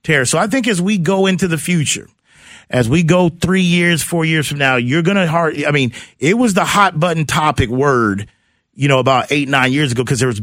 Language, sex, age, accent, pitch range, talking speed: English, male, 40-59, American, 125-160 Hz, 230 wpm